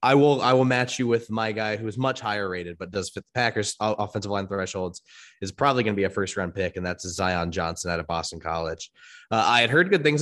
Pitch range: 90-115 Hz